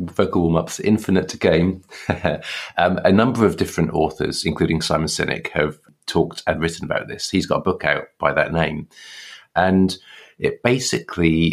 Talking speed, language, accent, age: 155 wpm, English, British, 30-49